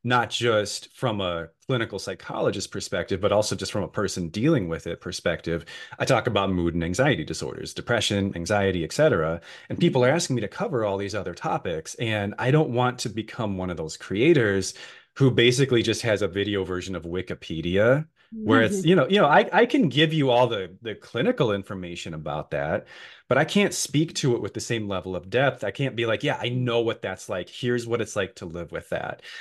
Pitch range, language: 95-130 Hz, English